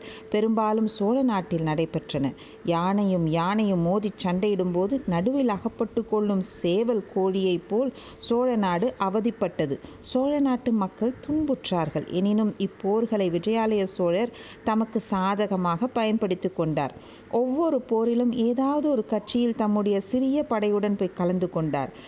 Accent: native